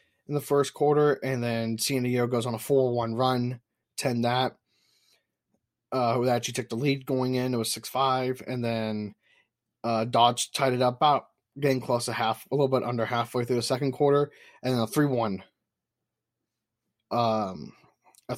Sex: male